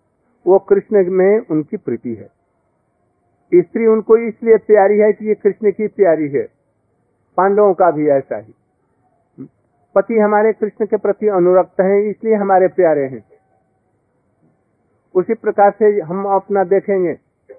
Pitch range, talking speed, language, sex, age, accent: 175-215 Hz, 135 wpm, Hindi, male, 50-69, native